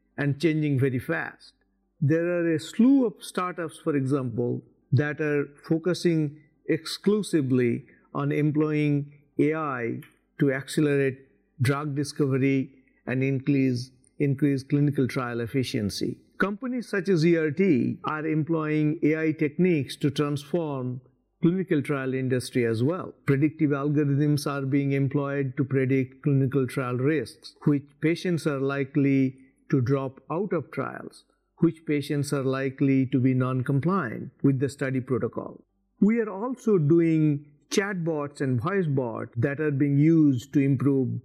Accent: Indian